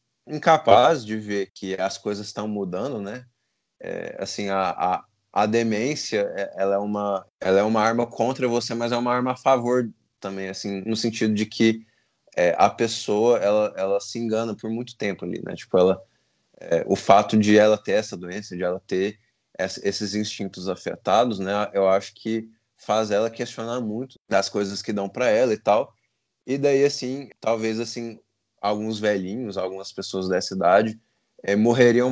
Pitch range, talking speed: 100-115 Hz, 175 wpm